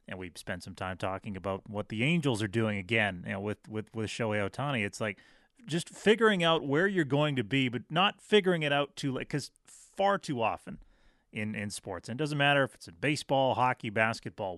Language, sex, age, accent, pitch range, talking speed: English, male, 30-49, American, 110-140 Hz, 220 wpm